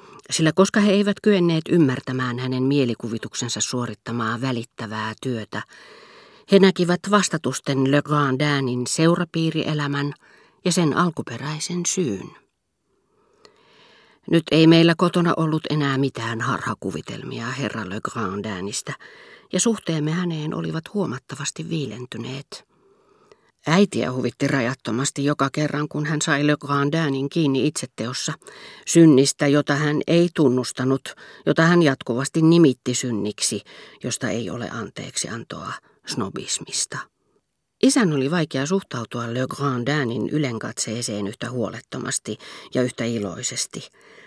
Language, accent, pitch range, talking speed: Finnish, native, 130-170 Hz, 105 wpm